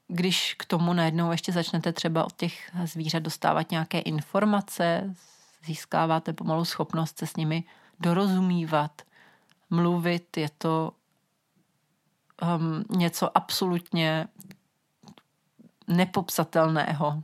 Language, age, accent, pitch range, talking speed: Czech, 40-59, native, 160-195 Hz, 90 wpm